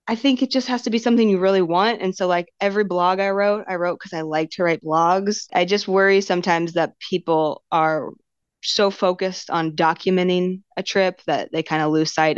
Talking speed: 220 wpm